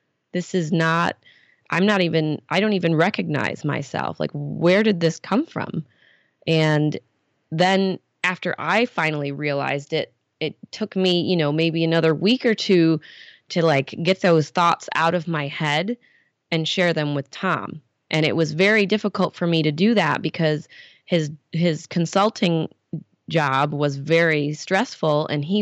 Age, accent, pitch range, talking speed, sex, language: 20-39, American, 155-190 Hz, 160 wpm, female, English